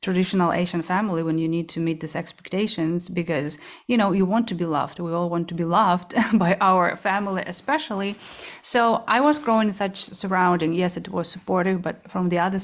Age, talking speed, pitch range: 30-49, 205 wpm, 170-210 Hz